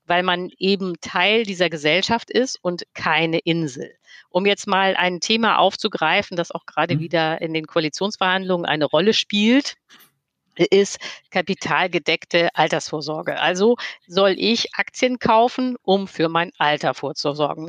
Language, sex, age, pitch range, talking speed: German, female, 50-69, 165-225 Hz, 130 wpm